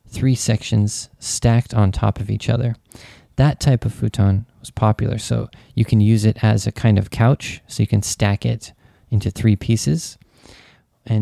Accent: American